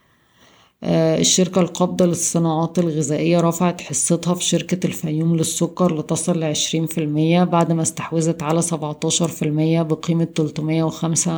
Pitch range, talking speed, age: 160-175 Hz, 125 wpm, 20-39